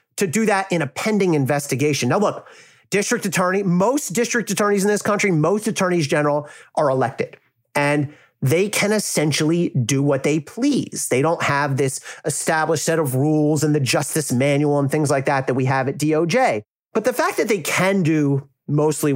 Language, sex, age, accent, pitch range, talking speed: English, male, 30-49, American, 135-210 Hz, 185 wpm